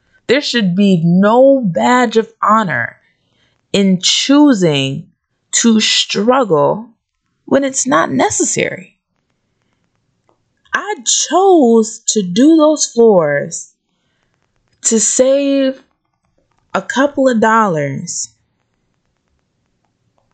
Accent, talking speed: American, 80 wpm